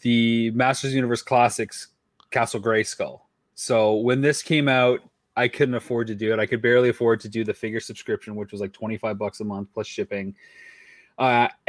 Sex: male